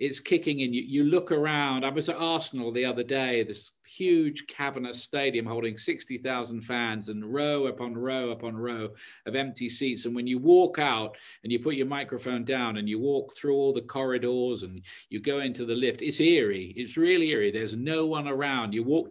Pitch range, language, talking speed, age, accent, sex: 120-155 Hz, English, 205 wpm, 40-59, British, male